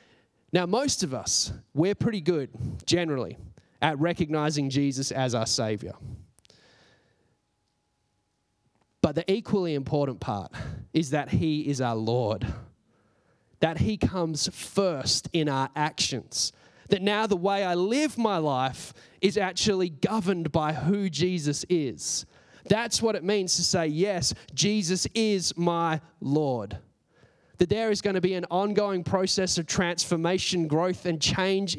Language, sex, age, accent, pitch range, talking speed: English, male, 20-39, Australian, 125-175 Hz, 135 wpm